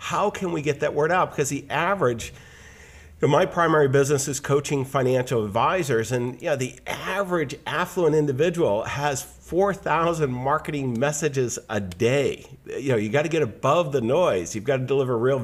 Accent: American